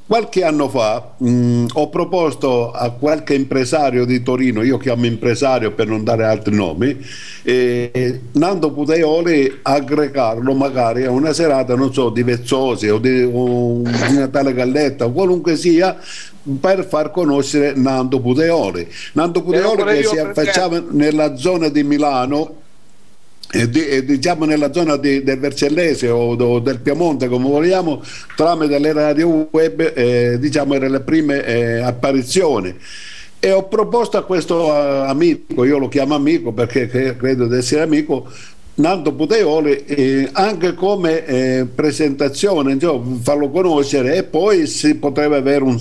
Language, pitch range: Italian, 125-155 Hz